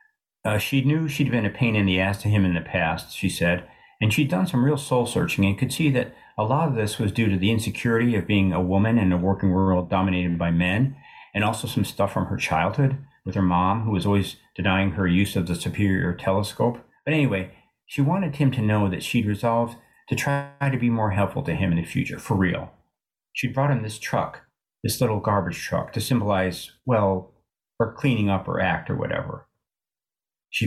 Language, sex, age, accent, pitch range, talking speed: English, male, 50-69, American, 95-120 Hz, 220 wpm